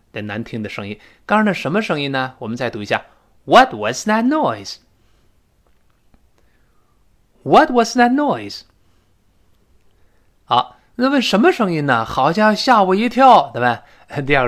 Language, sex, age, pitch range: Chinese, male, 20-39, 115-180 Hz